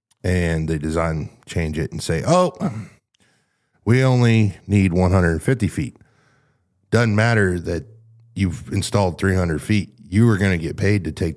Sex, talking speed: male, 150 wpm